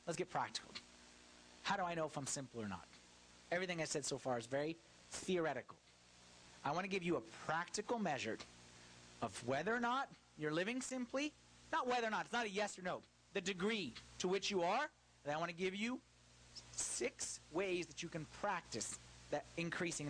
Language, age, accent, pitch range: English, 30-49, American, 130-220 Hz